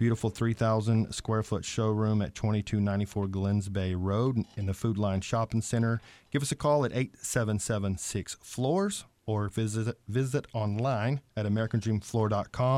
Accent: American